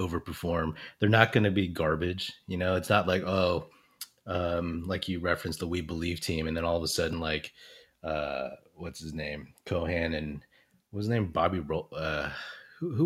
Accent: American